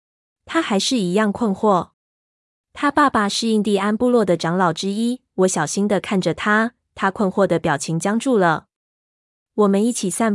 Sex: female